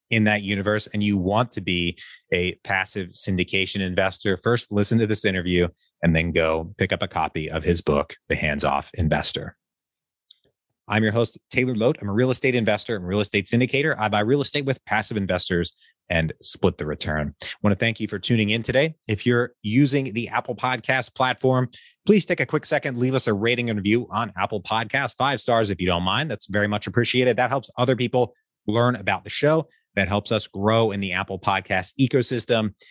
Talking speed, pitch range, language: 205 wpm, 95-125 Hz, English